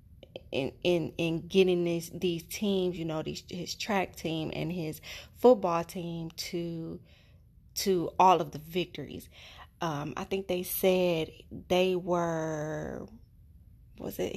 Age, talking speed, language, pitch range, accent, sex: 20-39, 135 wpm, English, 165-195 Hz, American, female